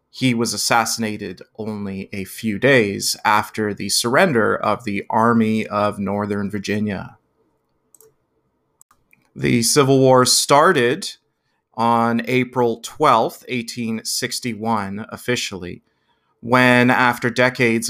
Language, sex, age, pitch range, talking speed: English, male, 30-49, 105-120 Hz, 95 wpm